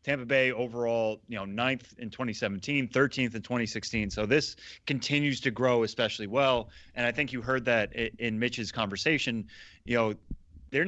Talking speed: 165 wpm